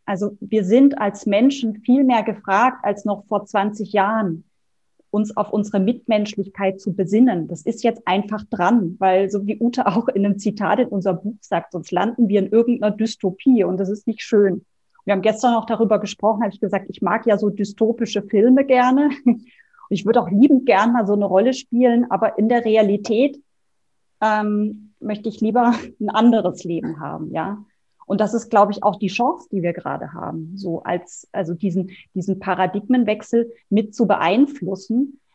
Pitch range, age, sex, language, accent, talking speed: 190-230 Hz, 30-49, female, German, German, 180 wpm